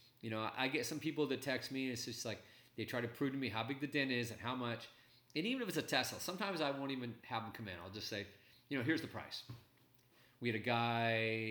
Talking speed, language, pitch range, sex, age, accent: 275 wpm, English, 105-135 Hz, male, 40-59, American